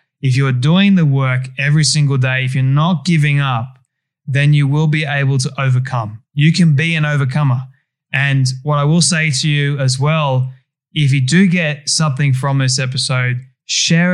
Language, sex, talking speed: English, male, 185 wpm